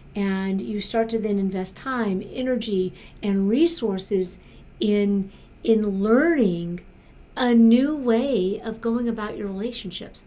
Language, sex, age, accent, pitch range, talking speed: English, female, 50-69, American, 185-225 Hz, 125 wpm